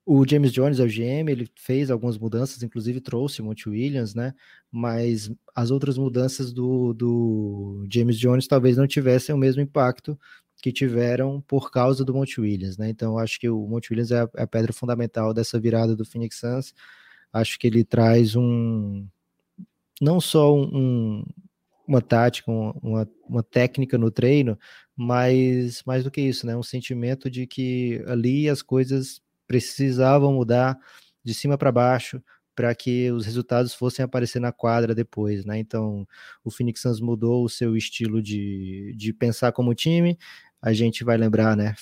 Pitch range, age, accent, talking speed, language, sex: 115-130 Hz, 20-39, Brazilian, 165 wpm, Portuguese, male